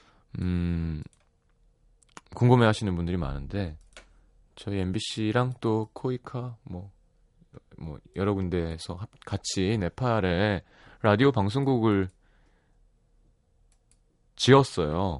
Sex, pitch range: male, 85-110 Hz